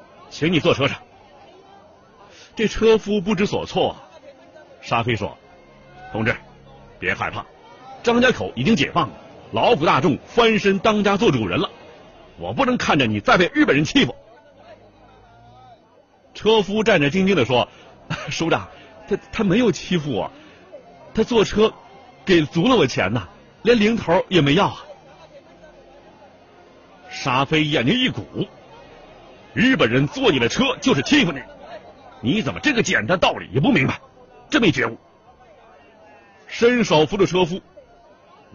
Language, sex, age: Chinese, male, 50-69